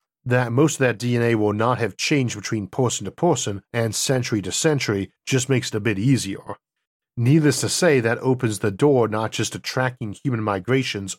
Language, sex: English, male